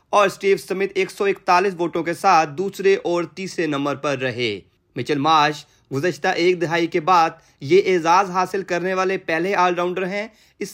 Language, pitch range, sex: Urdu, 150-180 Hz, male